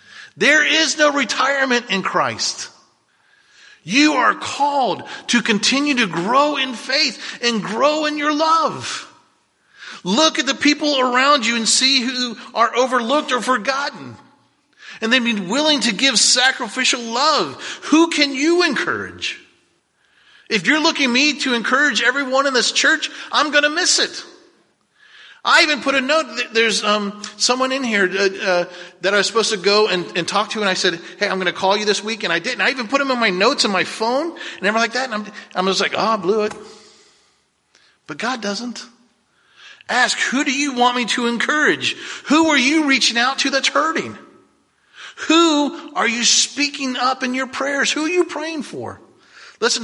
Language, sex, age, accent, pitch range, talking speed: English, male, 40-59, American, 220-290 Hz, 185 wpm